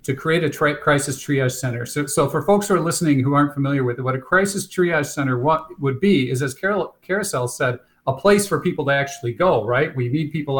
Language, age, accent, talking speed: English, 50-69, American, 245 wpm